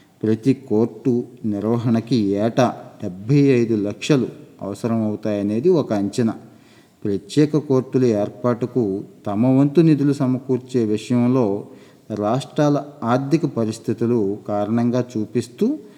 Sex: male